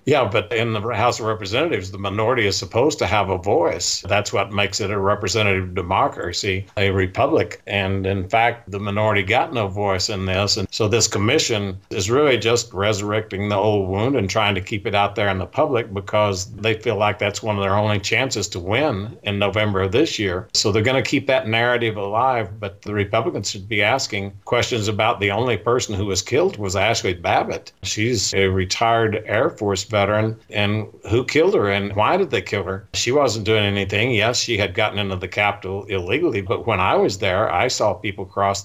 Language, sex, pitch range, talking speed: English, male, 100-115 Hz, 210 wpm